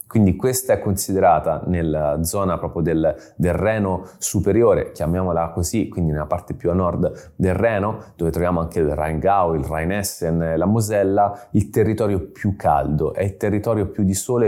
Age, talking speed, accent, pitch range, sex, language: 30-49, 165 wpm, native, 85-105 Hz, male, Italian